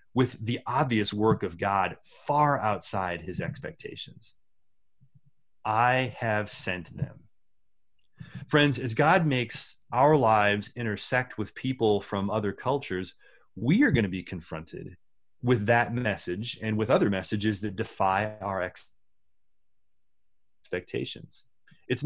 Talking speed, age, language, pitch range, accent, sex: 120 wpm, 30-49, English, 100-130 Hz, American, male